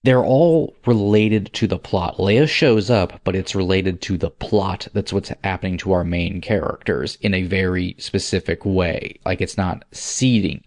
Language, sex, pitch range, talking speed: English, male, 95-110 Hz, 175 wpm